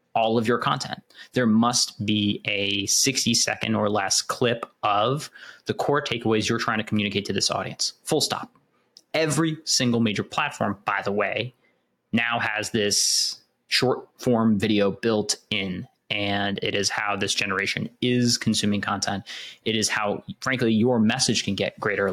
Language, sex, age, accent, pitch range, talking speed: English, male, 20-39, American, 100-120 Hz, 160 wpm